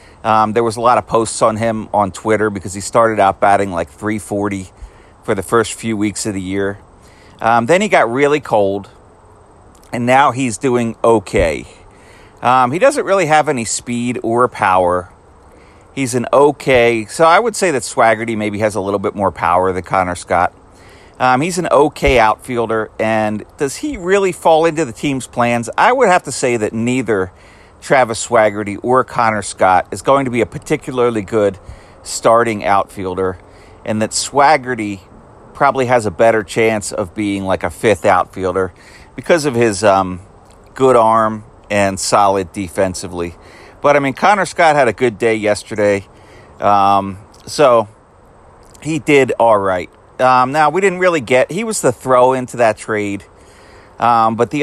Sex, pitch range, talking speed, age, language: male, 100-125 Hz, 170 wpm, 40-59, English